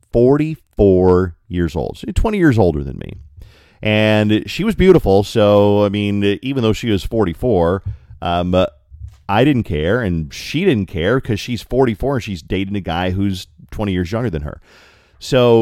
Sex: male